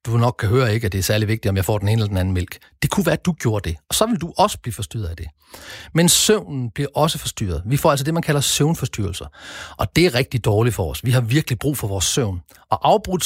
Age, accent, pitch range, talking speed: 40-59, native, 110-155 Hz, 285 wpm